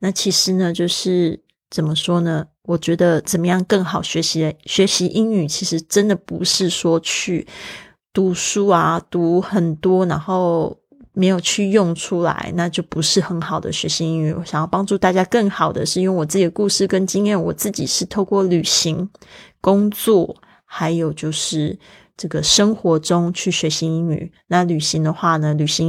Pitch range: 165-195 Hz